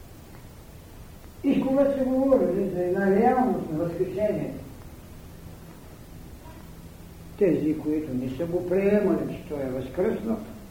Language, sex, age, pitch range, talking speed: Bulgarian, male, 60-79, 145-210 Hz, 105 wpm